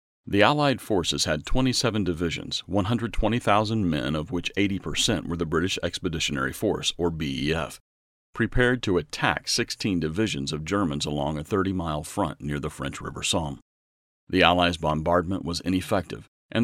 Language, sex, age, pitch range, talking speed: English, male, 40-59, 75-100 Hz, 145 wpm